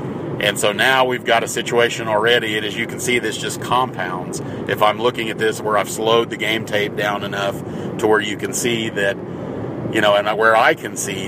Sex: male